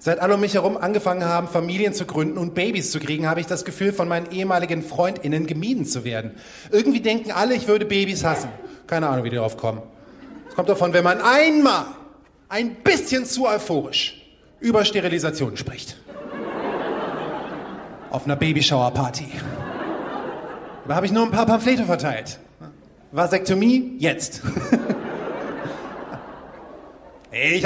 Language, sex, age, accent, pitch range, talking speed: German, male, 30-49, German, 160-220 Hz, 140 wpm